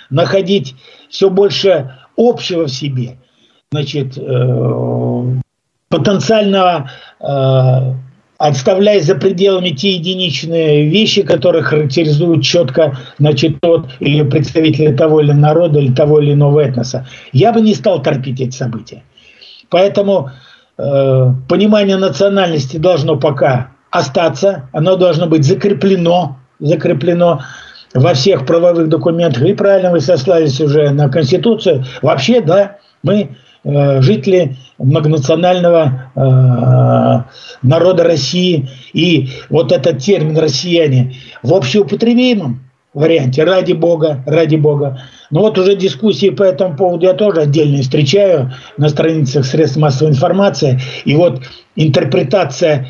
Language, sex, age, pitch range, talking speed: Russian, male, 50-69, 135-180 Hz, 115 wpm